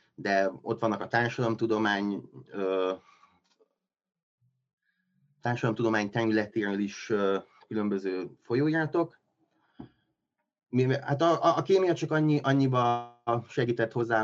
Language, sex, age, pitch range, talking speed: Hungarian, male, 30-49, 105-145 Hz, 95 wpm